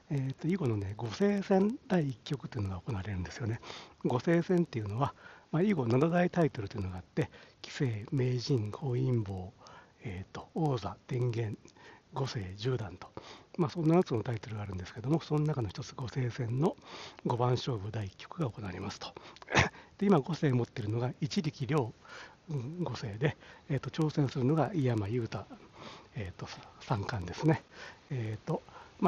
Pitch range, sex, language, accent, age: 110-145 Hz, male, Japanese, native, 60-79